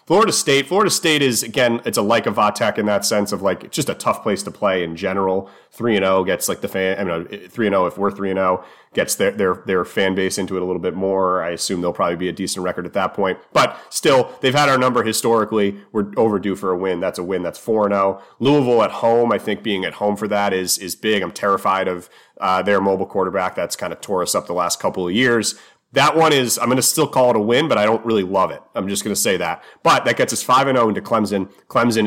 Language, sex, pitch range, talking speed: English, male, 90-110 Hz, 270 wpm